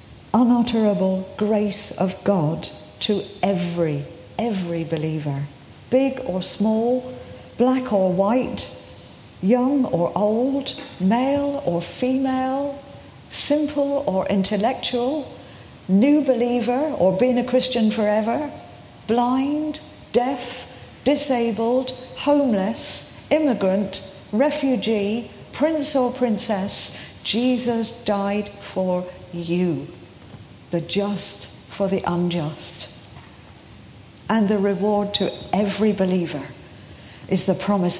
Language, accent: English, British